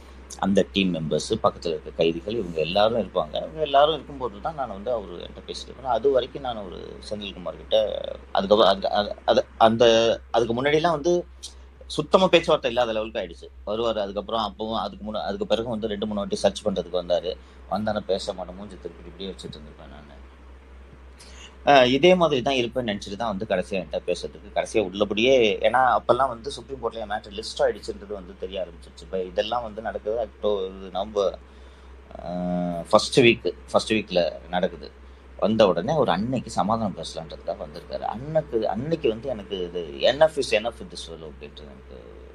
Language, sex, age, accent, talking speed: Tamil, male, 30-49, native, 155 wpm